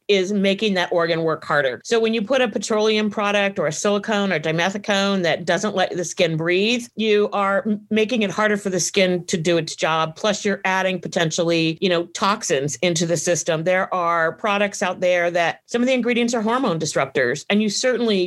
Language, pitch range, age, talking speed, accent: English, 175-215 Hz, 40-59, 205 wpm, American